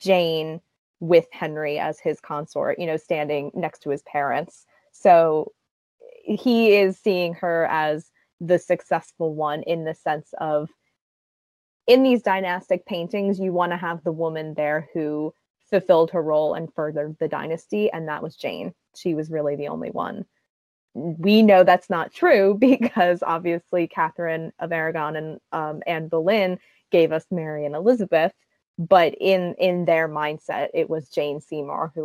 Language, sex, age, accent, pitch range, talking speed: English, female, 20-39, American, 155-185 Hz, 155 wpm